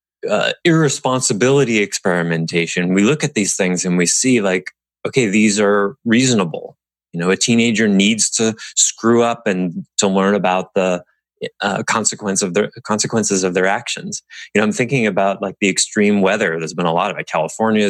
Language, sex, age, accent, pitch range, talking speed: English, male, 20-39, American, 85-115 Hz, 180 wpm